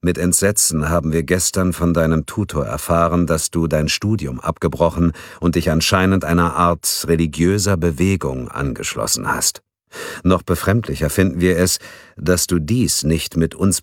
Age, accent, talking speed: 50-69, German, 150 wpm